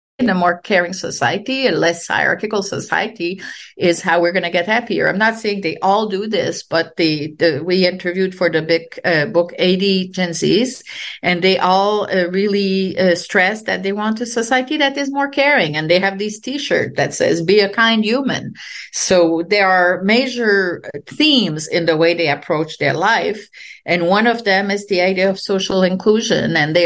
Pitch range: 175-215 Hz